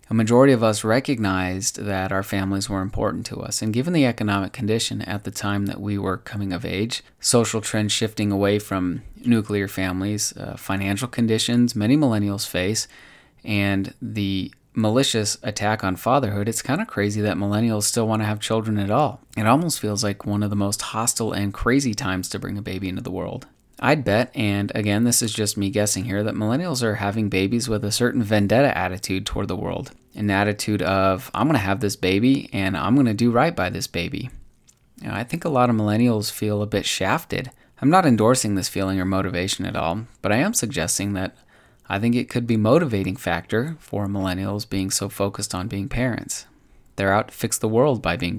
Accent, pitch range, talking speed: American, 100-115 Hz, 205 wpm